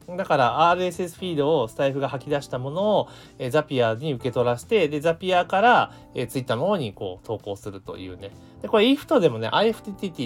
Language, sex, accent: Japanese, male, native